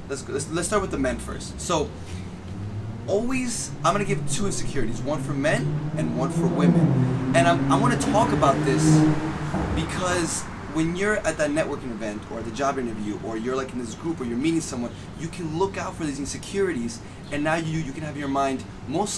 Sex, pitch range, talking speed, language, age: male, 120-160 Hz, 215 wpm, English, 20-39